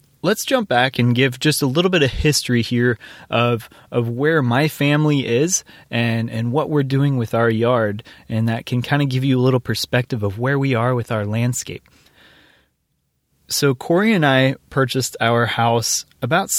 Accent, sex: American, male